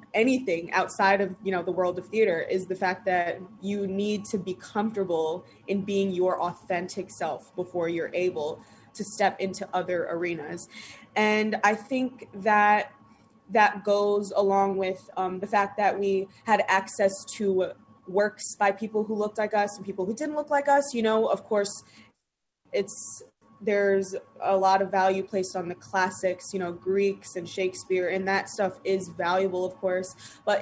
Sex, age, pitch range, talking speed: female, 20-39, 185-215 Hz, 170 wpm